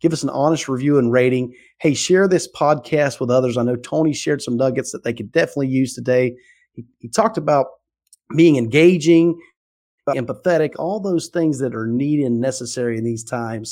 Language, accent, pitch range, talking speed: English, American, 120-155 Hz, 190 wpm